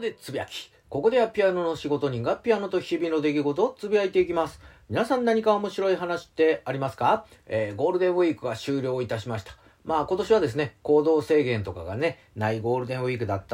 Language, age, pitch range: Japanese, 40-59, 110-165 Hz